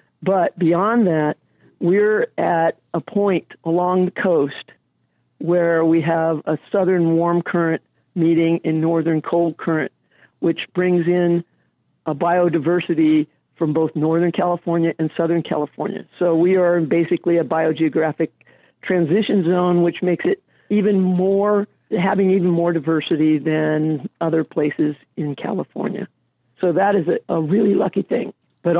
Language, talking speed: English, 135 wpm